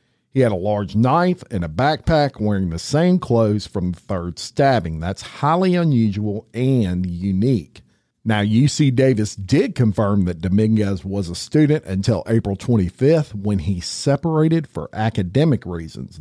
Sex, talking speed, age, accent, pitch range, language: male, 150 wpm, 50-69, American, 95-135 Hz, English